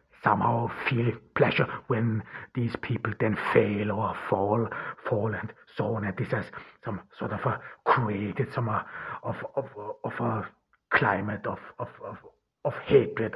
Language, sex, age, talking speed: English, male, 60-79, 155 wpm